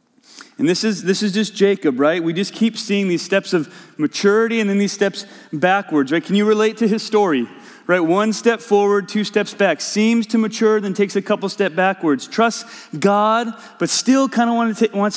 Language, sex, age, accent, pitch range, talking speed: English, male, 30-49, American, 140-225 Hz, 205 wpm